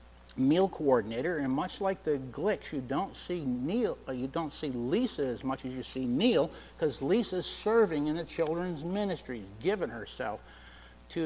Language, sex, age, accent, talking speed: English, male, 60-79, American, 165 wpm